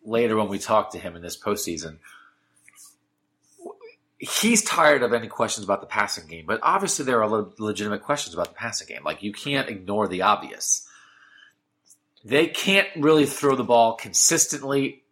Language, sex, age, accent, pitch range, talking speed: English, male, 30-49, American, 105-160 Hz, 165 wpm